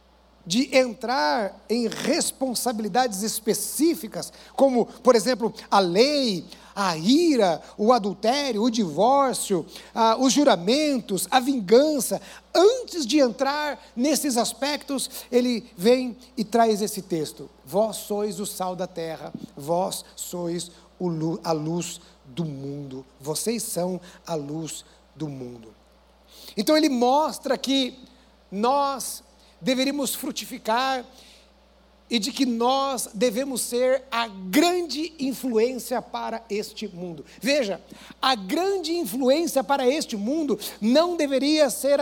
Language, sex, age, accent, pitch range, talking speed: Portuguese, male, 60-79, Brazilian, 205-275 Hz, 110 wpm